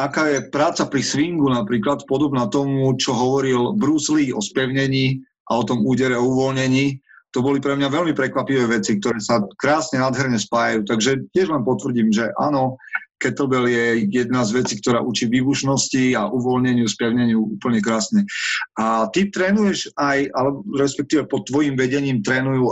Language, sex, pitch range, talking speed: Slovak, male, 125-145 Hz, 160 wpm